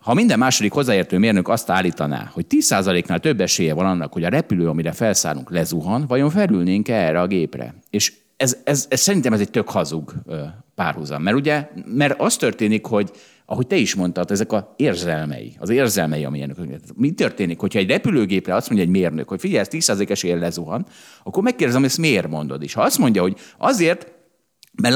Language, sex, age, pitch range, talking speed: Hungarian, male, 50-69, 100-160 Hz, 185 wpm